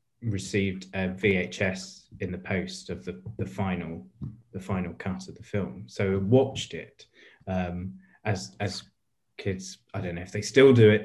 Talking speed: 175 wpm